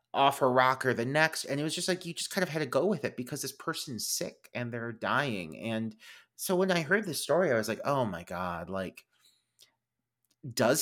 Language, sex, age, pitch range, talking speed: English, male, 30-49, 115-190 Hz, 235 wpm